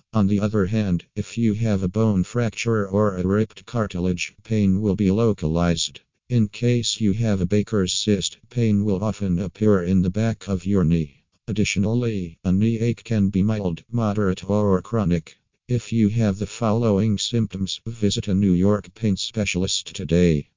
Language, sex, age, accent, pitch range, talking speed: English, male, 50-69, American, 95-110 Hz, 170 wpm